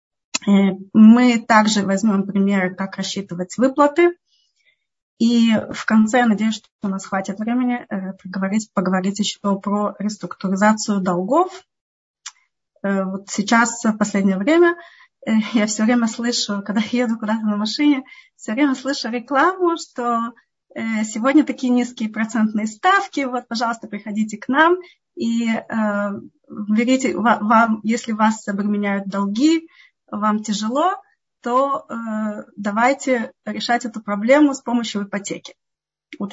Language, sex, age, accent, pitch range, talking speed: Russian, female, 20-39, native, 205-255 Hz, 115 wpm